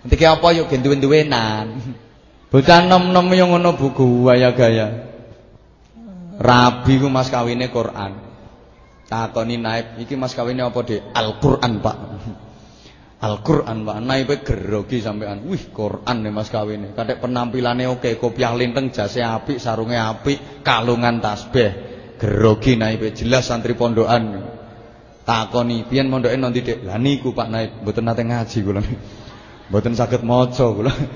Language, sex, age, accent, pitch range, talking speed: English, male, 20-39, Indonesian, 110-130 Hz, 125 wpm